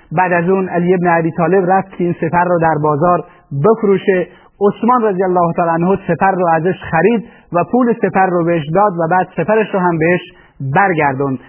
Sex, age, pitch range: male, 30-49, 175-200 Hz